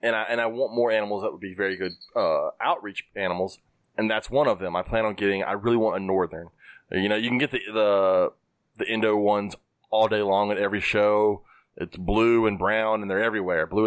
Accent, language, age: American, English, 20-39